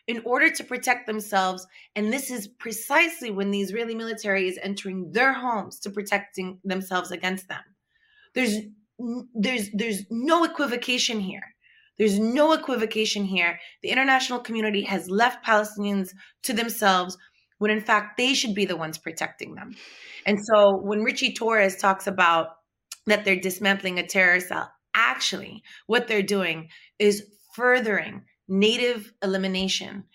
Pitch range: 185-225 Hz